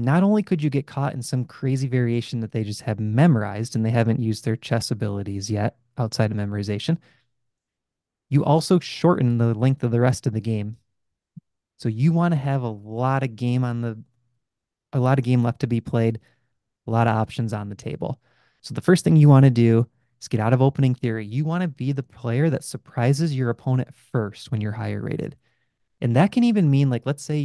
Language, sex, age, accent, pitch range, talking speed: English, male, 20-39, American, 115-140 Hz, 220 wpm